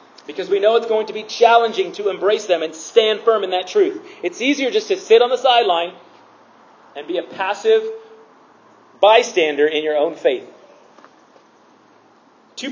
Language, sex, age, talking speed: English, male, 30-49, 165 wpm